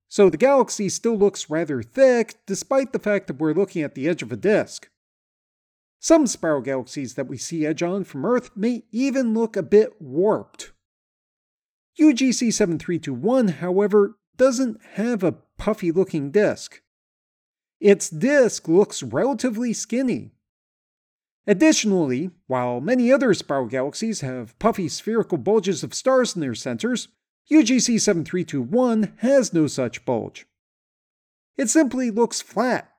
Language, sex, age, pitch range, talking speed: English, male, 40-59, 150-235 Hz, 130 wpm